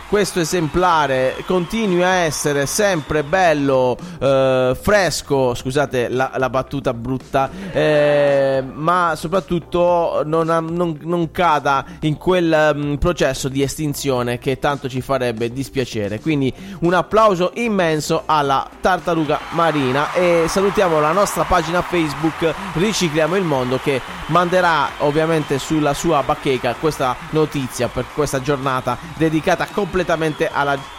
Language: Italian